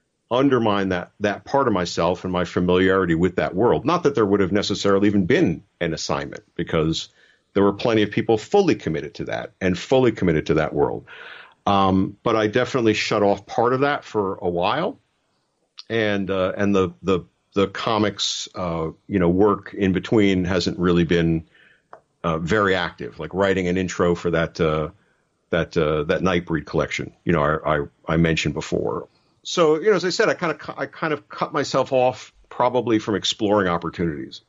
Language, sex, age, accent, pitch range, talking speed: English, male, 50-69, American, 90-110 Hz, 185 wpm